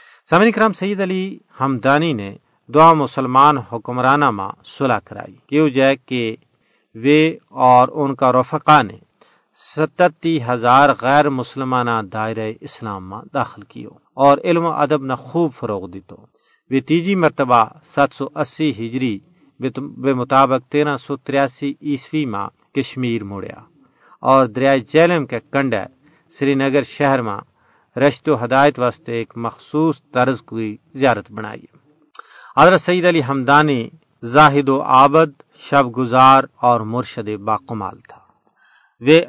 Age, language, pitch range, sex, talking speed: 50-69, Urdu, 120-145 Hz, male, 125 wpm